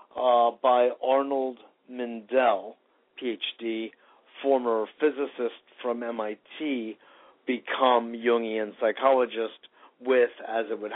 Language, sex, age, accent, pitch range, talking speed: English, male, 50-69, American, 115-145 Hz, 90 wpm